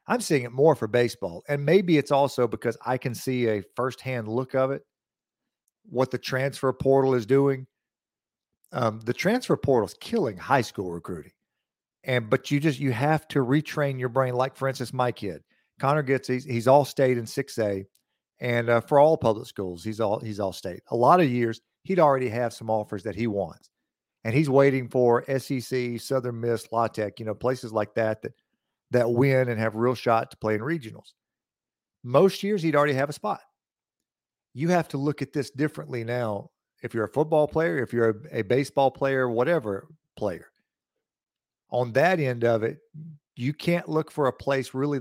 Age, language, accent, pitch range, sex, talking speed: 50-69, English, American, 115-140 Hz, male, 190 wpm